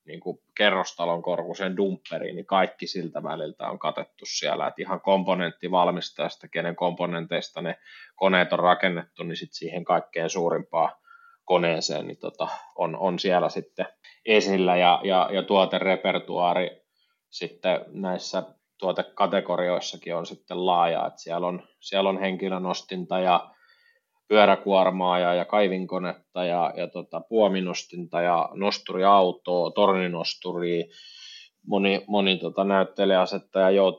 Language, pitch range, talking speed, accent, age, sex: Finnish, 90-100 Hz, 115 wpm, native, 20-39, male